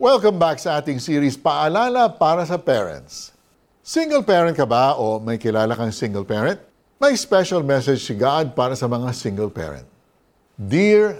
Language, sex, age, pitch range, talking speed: Filipino, male, 50-69, 115-180 Hz, 160 wpm